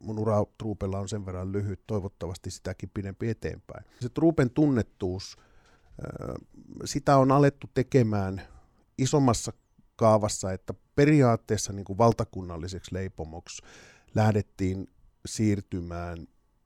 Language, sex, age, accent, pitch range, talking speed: Finnish, male, 50-69, native, 90-110 Hz, 95 wpm